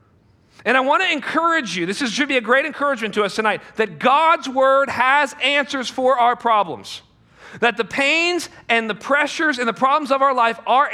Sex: male